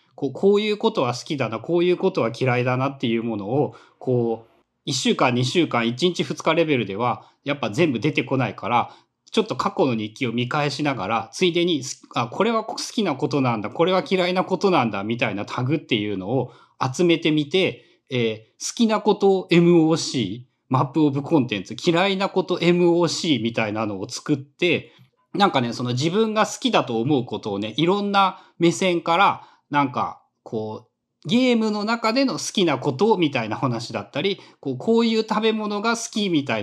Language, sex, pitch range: Japanese, male, 125-205 Hz